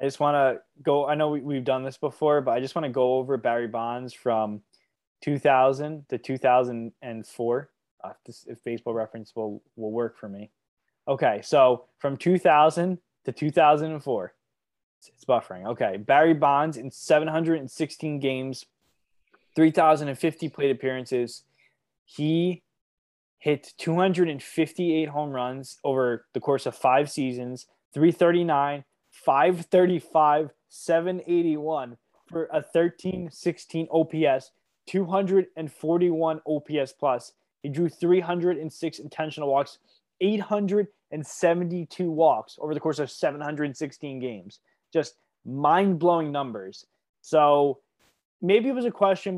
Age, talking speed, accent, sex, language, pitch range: 10-29, 115 wpm, American, male, English, 130-165 Hz